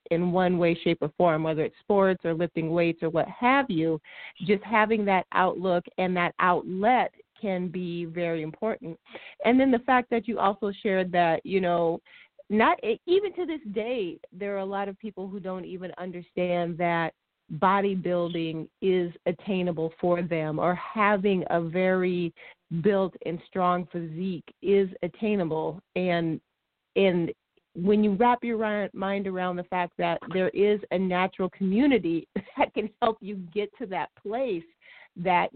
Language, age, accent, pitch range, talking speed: English, 40-59, American, 175-215 Hz, 160 wpm